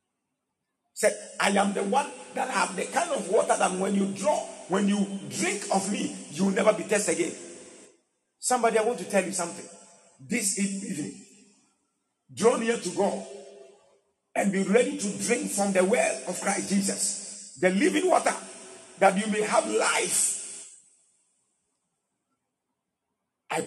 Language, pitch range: English, 195-230 Hz